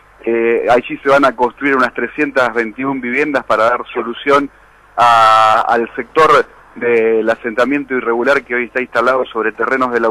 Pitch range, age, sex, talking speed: 115-145 Hz, 40-59, male, 160 wpm